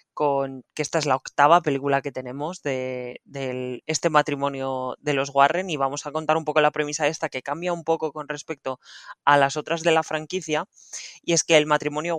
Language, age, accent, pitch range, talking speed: Spanish, 20-39, Spanish, 135-165 Hz, 205 wpm